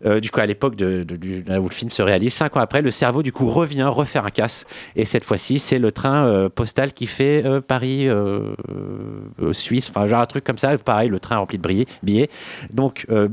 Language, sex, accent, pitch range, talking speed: French, male, French, 105-130 Hz, 240 wpm